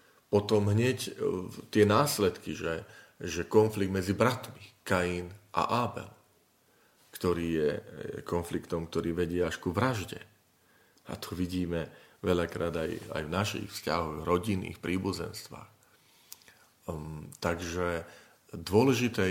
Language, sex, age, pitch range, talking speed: Slovak, male, 40-59, 85-105 Hz, 105 wpm